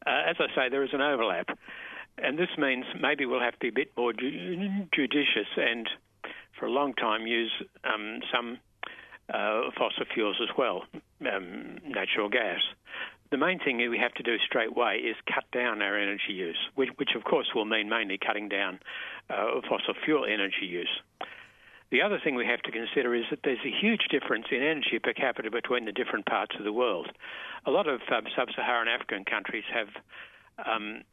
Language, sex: English, male